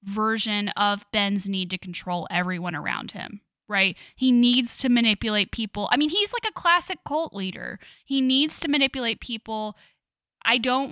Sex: female